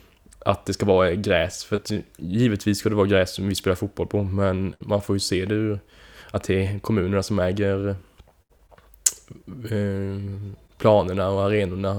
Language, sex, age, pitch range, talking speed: Swedish, male, 10-29, 95-105 Hz, 170 wpm